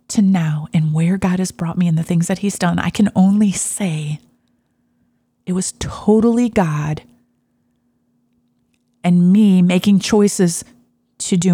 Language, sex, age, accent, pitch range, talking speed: English, female, 30-49, American, 165-200 Hz, 145 wpm